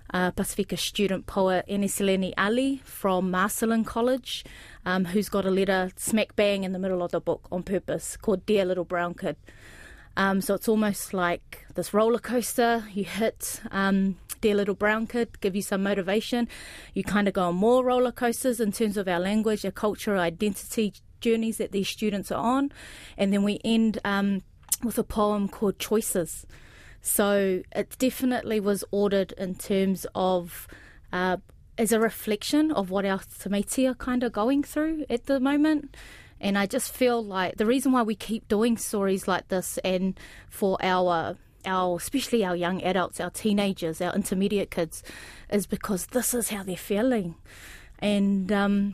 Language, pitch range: English, 190-225 Hz